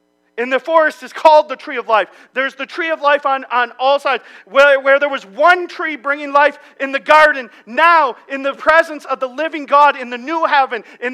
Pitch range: 260-310 Hz